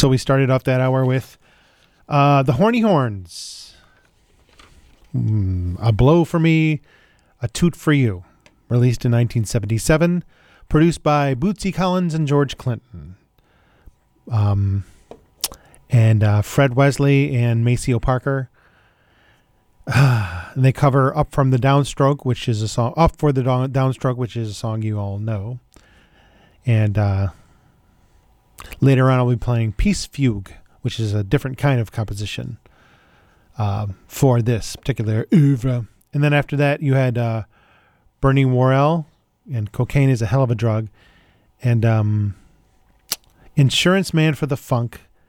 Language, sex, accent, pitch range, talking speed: English, male, American, 110-140 Hz, 140 wpm